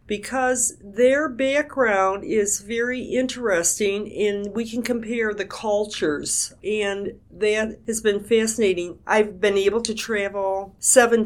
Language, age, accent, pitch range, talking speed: English, 50-69, American, 195-235 Hz, 125 wpm